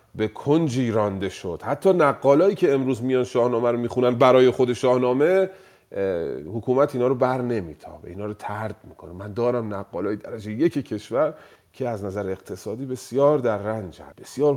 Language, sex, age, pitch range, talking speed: Persian, male, 40-59, 110-150 Hz, 160 wpm